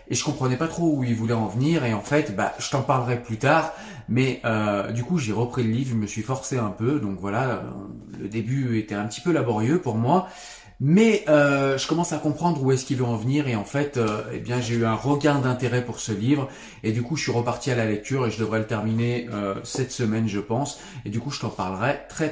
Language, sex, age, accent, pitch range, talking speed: French, male, 30-49, French, 110-145 Hz, 260 wpm